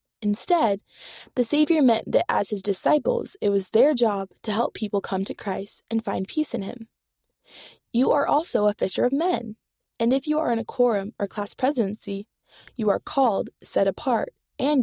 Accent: American